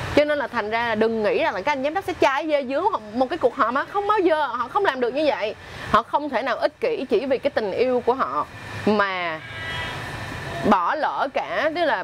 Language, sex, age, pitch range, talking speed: Vietnamese, female, 20-39, 215-305 Hz, 260 wpm